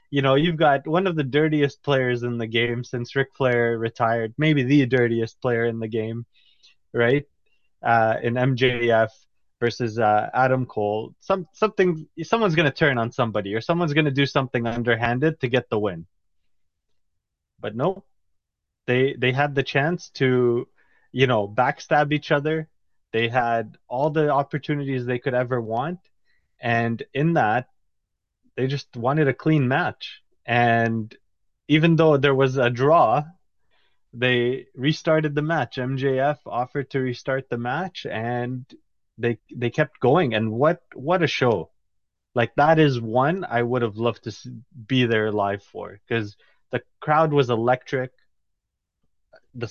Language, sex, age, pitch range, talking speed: English, male, 20-39, 115-150 Hz, 155 wpm